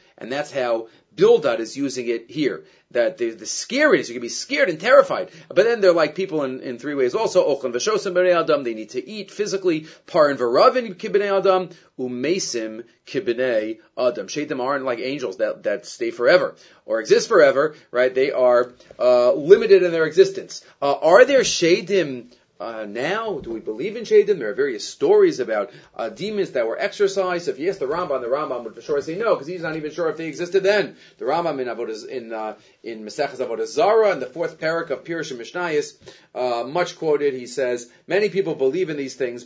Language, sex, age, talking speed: English, male, 30-49, 190 wpm